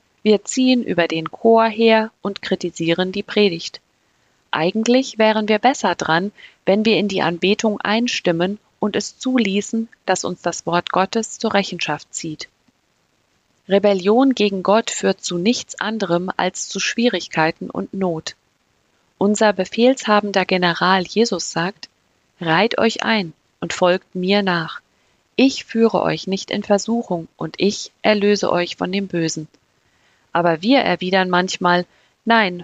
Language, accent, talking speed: German, German, 135 wpm